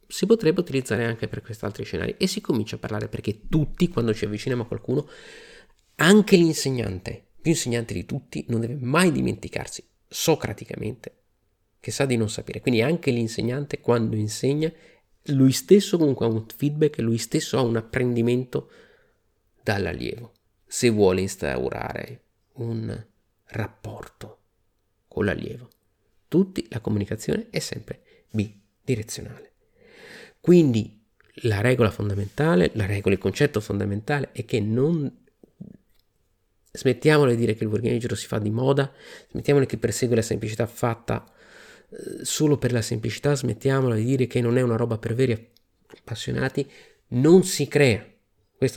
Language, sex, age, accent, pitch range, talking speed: Italian, male, 30-49, native, 110-140 Hz, 145 wpm